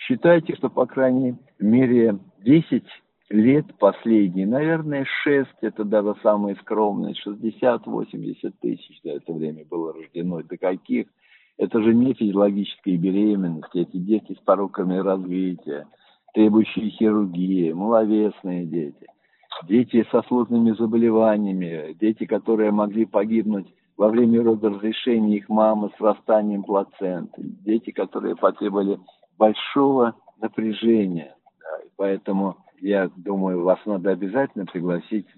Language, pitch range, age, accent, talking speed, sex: Russian, 95-115 Hz, 50-69, native, 110 wpm, male